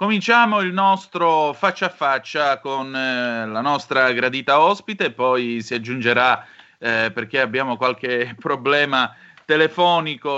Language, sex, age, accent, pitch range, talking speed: Italian, male, 30-49, native, 120-155 Hz, 120 wpm